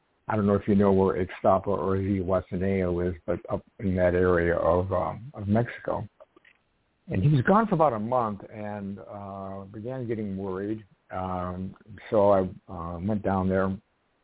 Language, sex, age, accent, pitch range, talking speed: English, male, 60-79, American, 95-110 Hz, 165 wpm